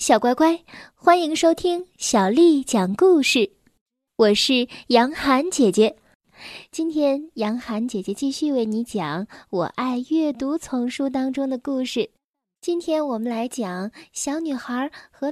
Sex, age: female, 10-29